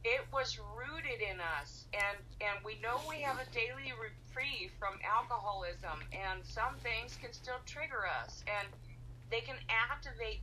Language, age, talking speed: English, 40-59, 155 wpm